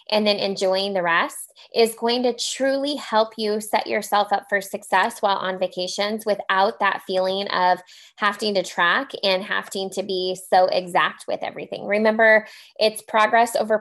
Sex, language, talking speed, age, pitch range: female, English, 165 wpm, 20-39, 195-230 Hz